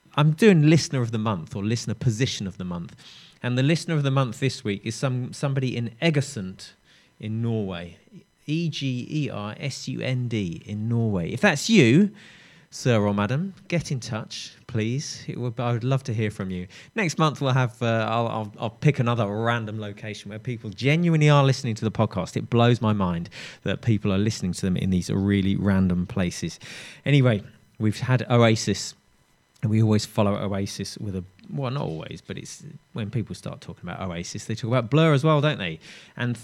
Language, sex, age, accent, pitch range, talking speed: English, male, 20-39, British, 105-135 Hz, 190 wpm